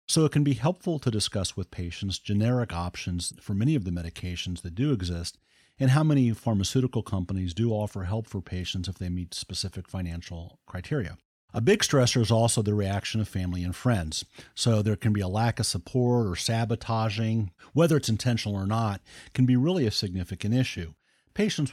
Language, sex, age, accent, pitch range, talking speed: English, male, 50-69, American, 95-125 Hz, 190 wpm